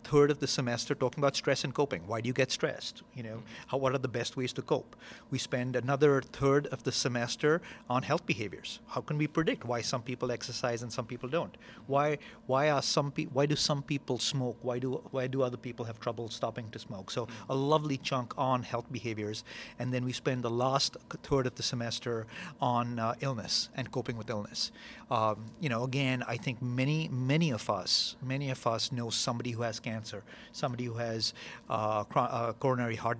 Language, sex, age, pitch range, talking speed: English, male, 50-69, 120-140 Hz, 210 wpm